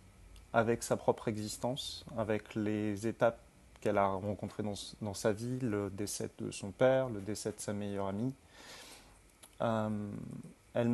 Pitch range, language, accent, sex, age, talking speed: 105-125 Hz, French, French, male, 30-49, 150 wpm